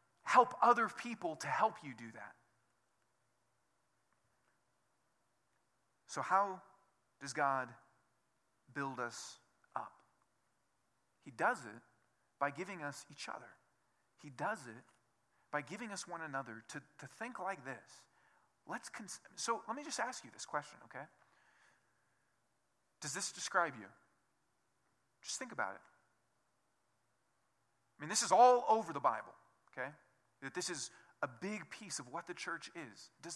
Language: English